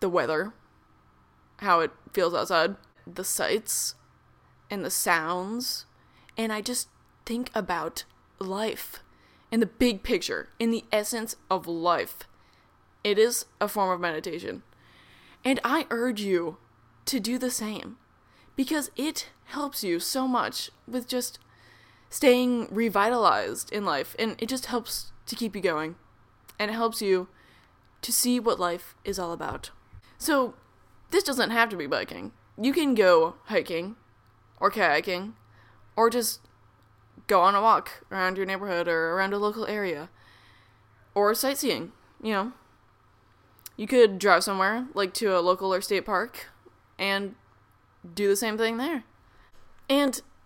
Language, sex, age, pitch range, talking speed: English, female, 10-29, 175-240 Hz, 145 wpm